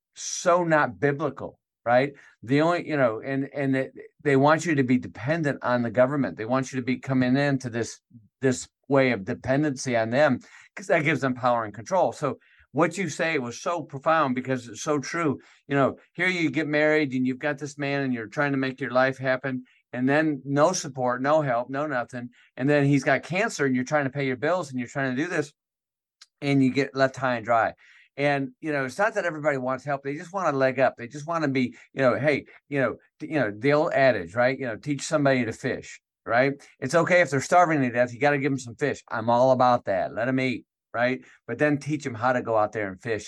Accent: American